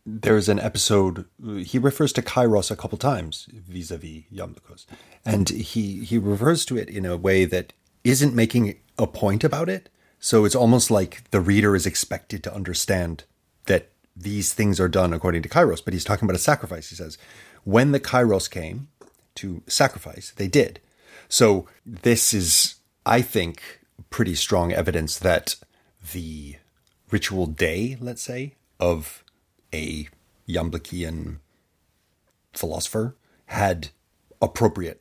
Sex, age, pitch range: male, 30-49, 85-110 Hz